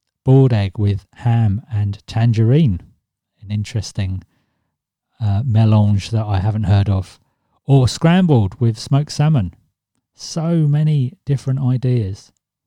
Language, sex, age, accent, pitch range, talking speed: English, male, 40-59, British, 105-135 Hz, 115 wpm